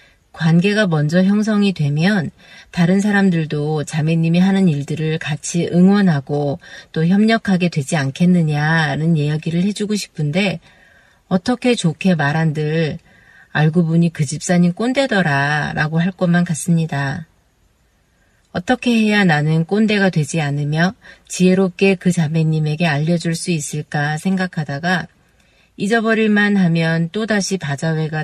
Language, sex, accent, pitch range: Korean, female, native, 155-190 Hz